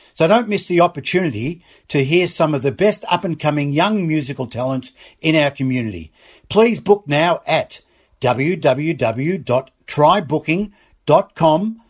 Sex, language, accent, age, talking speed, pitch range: male, English, Australian, 60-79, 115 wpm, 130-180 Hz